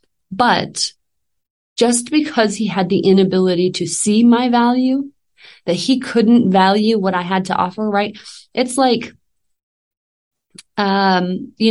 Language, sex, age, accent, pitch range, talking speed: English, female, 30-49, American, 175-220 Hz, 130 wpm